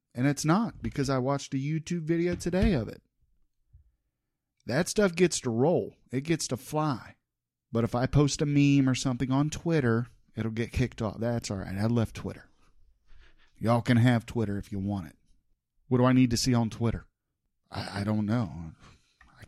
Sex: male